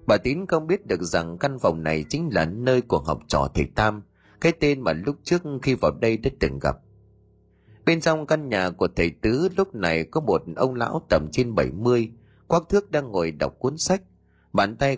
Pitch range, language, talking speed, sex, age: 90-145 Hz, Vietnamese, 210 wpm, male, 30-49